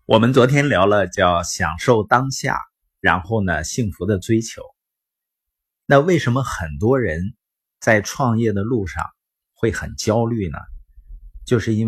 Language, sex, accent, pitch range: Chinese, male, native, 95-130 Hz